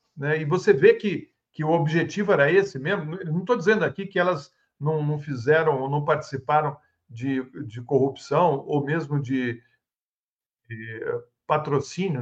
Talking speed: 150 wpm